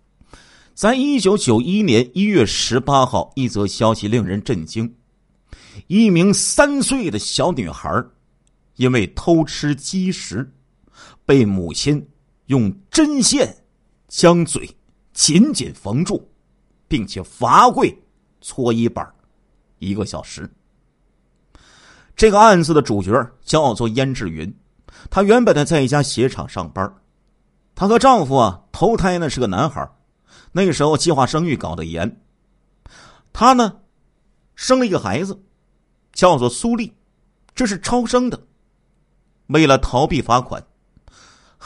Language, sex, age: Chinese, male, 50-69